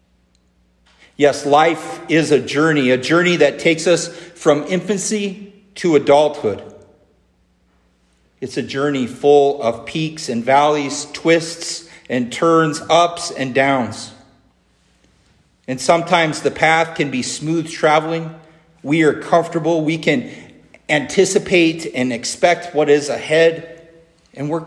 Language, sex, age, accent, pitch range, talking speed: English, male, 40-59, American, 115-165 Hz, 120 wpm